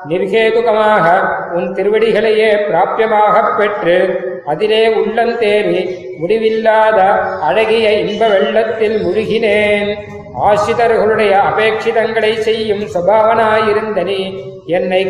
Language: Tamil